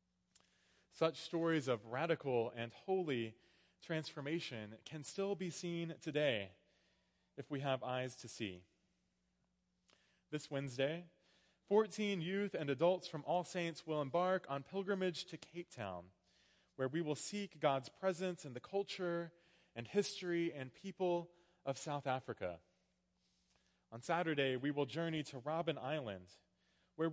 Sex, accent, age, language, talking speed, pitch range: male, American, 20-39, English, 130 wpm, 115-175 Hz